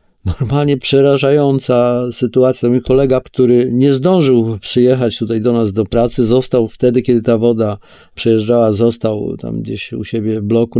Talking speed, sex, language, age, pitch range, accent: 150 wpm, male, Polish, 50-69, 110-130 Hz, native